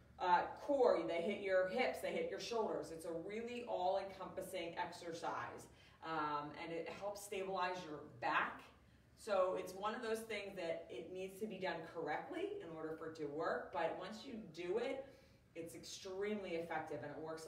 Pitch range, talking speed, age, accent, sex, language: 180-220 Hz, 180 wpm, 30-49, American, female, English